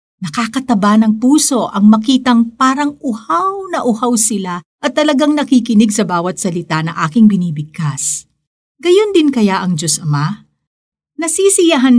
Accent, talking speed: native, 130 wpm